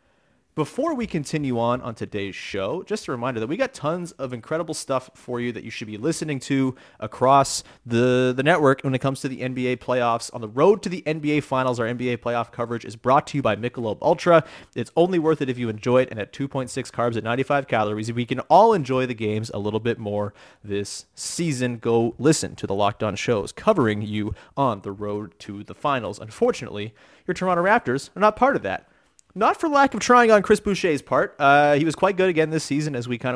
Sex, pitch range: male, 110-145 Hz